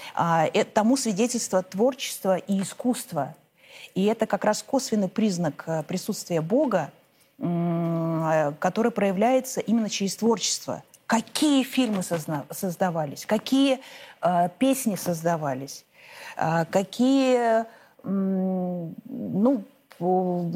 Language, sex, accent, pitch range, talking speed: Russian, female, native, 180-255 Hz, 75 wpm